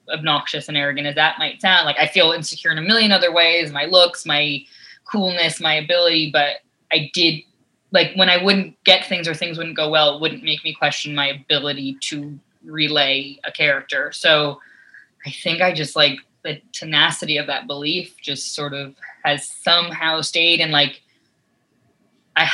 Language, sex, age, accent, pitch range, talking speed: English, female, 20-39, American, 150-175 Hz, 180 wpm